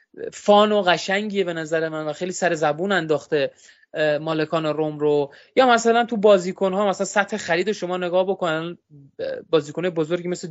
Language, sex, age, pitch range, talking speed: Persian, male, 20-39, 160-205 Hz, 165 wpm